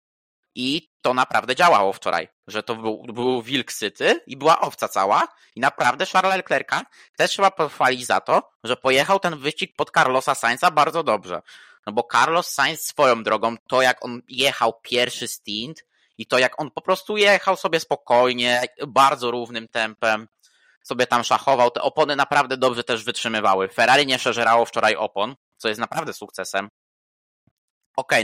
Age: 20-39